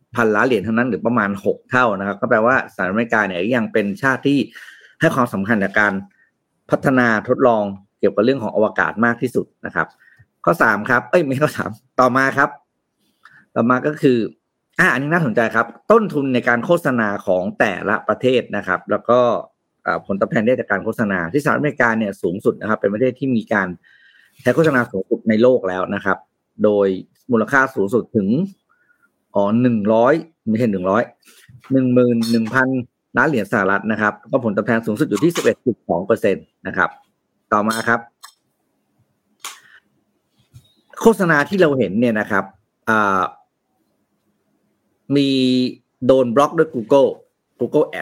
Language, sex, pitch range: Thai, male, 110-140 Hz